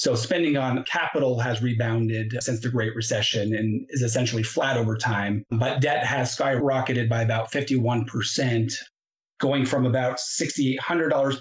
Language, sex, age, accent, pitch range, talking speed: English, male, 30-49, American, 115-135 Hz, 140 wpm